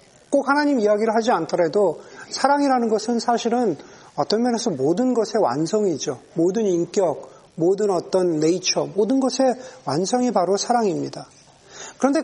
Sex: male